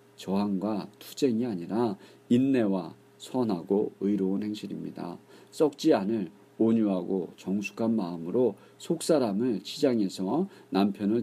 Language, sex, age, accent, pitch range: Korean, male, 40-59, native, 95-115 Hz